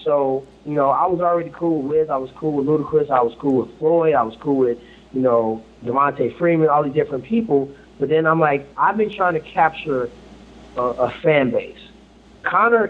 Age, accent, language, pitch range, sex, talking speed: 30-49, American, English, 140-175 Hz, male, 210 wpm